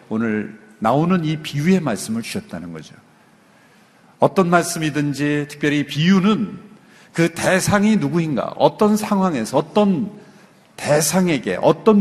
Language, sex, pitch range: Korean, male, 130-185 Hz